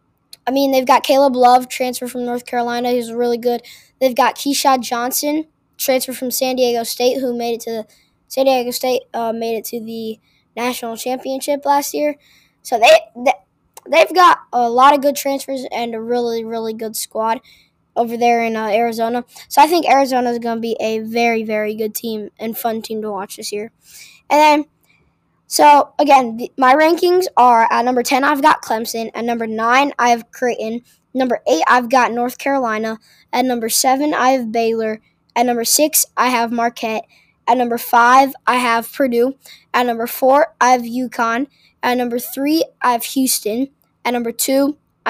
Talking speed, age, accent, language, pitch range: 185 wpm, 10-29, American, English, 230-270 Hz